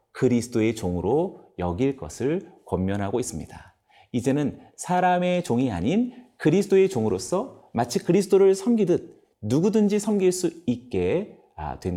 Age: 40-59